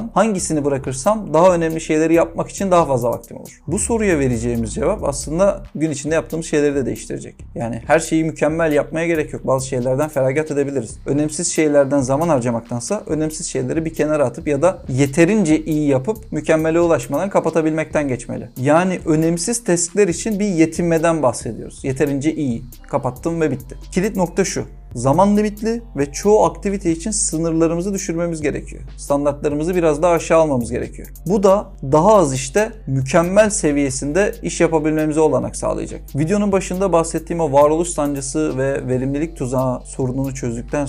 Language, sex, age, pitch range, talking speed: Turkish, male, 40-59, 135-165 Hz, 150 wpm